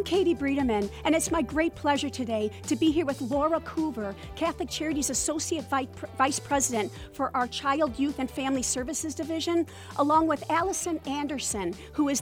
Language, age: English, 40-59